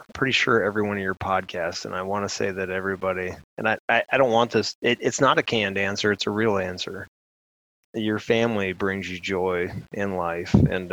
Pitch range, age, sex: 95-105 Hz, 20-39, male